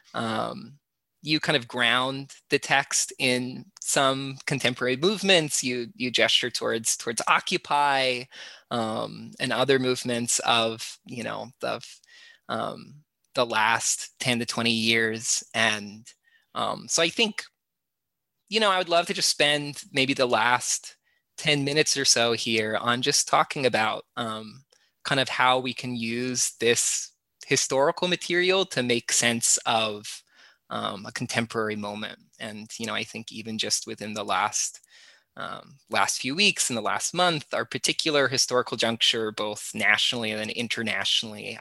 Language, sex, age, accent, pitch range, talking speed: English, male, 20-39, American, 115-145 Hz, 145 wpm